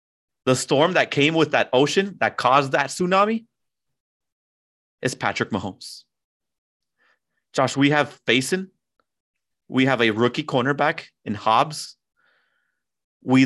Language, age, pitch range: English, 30-49, 105-150 Hz